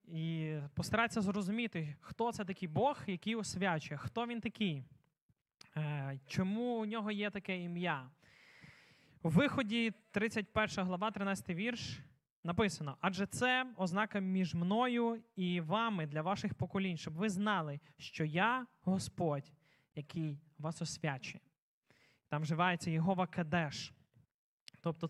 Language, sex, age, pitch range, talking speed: Ukrainian, male, 20-39, 165-215 Hz, 115 wpm